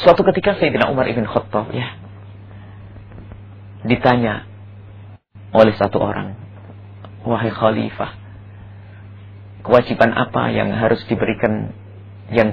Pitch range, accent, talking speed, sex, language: 100-115 Hz, Indonesian, 90 wpm, male, English